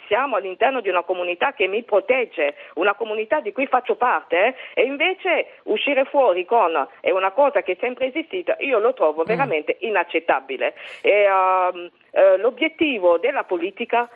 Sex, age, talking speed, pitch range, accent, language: female, 50-69, 155 wpm, 200-320 Hz, native, Italian